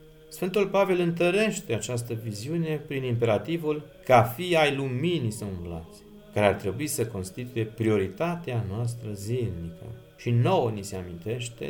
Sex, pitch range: male, 105-150 Hz